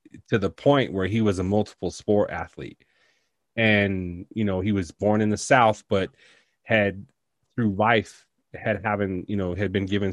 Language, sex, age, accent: English, male, 30-49, American